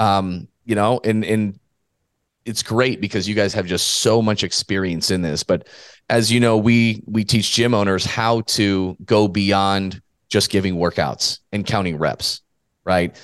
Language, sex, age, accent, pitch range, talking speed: English, male, 30-49, American, 95-115 Hz, 170 wpm